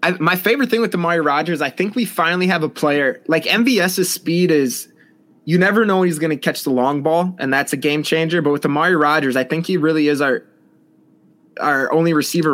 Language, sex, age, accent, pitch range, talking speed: English, male, 20-39, American, 130-160 Hz, 220 wpm